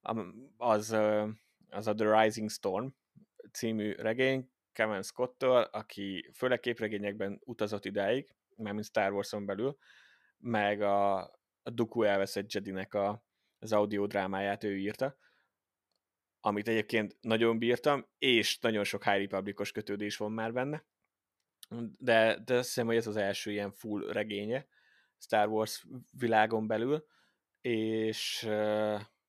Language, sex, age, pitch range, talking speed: Hungarian, male, 20-39, 100-115 Hz, 125 wpm